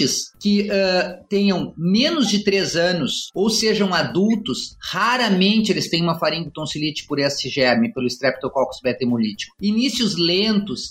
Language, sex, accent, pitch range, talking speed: Portuguese, male, Brazilian, 170-215 Hz, 125 wpm